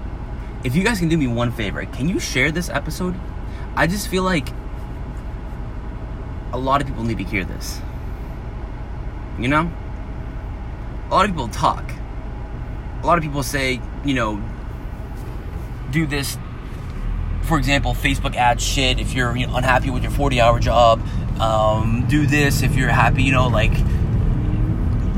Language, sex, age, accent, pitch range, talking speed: English, male, 20-39, American, 105-125 Hz, 150 wpm